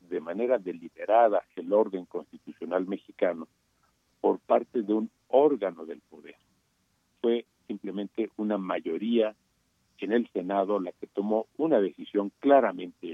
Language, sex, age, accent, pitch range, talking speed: Spanish, male, 50-69, Mexican, 90-110 Hz, 125 wpm